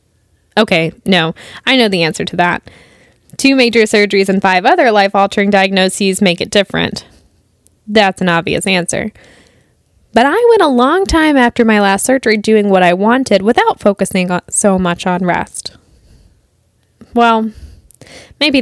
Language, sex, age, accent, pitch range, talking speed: English, female, 20-39, American, 180-225 Hz, 145 wpm